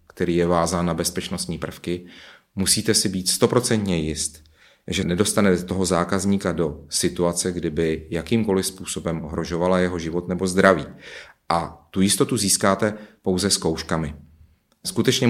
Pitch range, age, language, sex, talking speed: 90-100 Hz, 30-49, Czech, male, 125 wpm